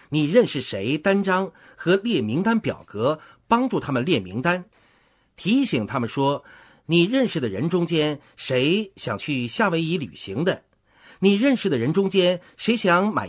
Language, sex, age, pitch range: Chinese, male, 50-69, 140-230 Hz